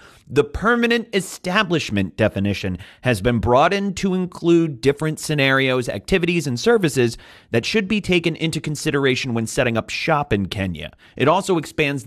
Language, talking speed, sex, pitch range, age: English, 150 wpm, male, 115-170 Hz, 30-49